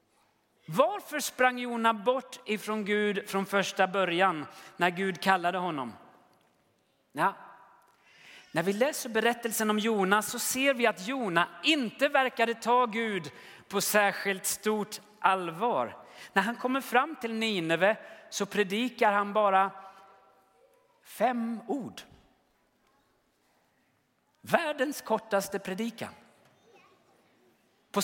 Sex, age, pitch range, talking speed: male, 40-59, 195-245 Hz, 105 wpm